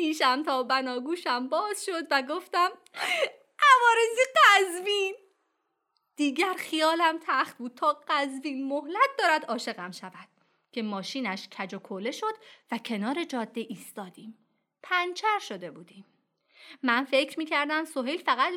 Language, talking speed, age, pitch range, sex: Persian, 120 wpm, 30-49, 220-330 Hz, female